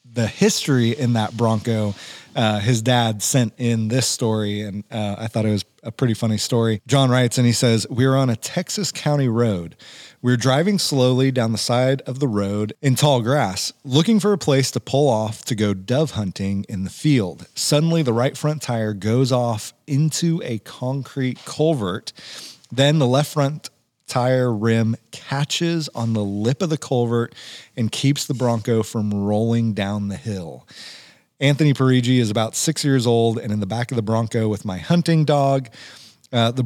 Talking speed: 185 wpm